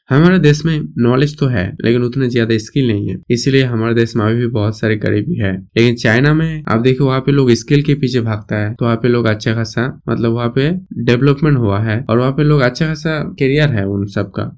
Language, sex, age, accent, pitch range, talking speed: Hindi, male, 20-39, native, 115-140 Hz, 235 wpm